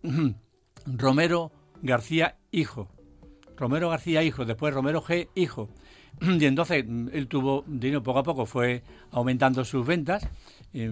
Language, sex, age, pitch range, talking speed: Spanish, male, 60-79, 125-145 Hz, 125 wpm